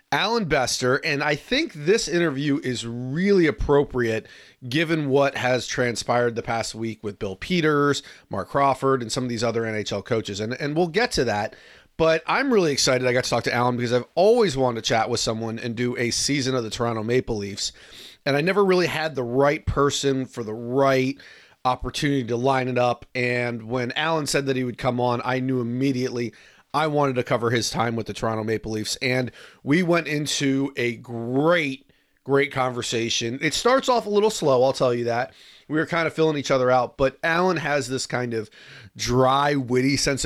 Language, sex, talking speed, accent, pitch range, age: English, male, 205 wpm, American, 120-145 Hz, 30-49